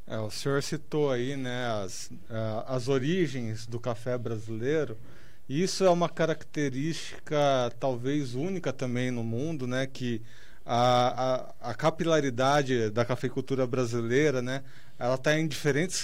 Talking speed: 135 wpm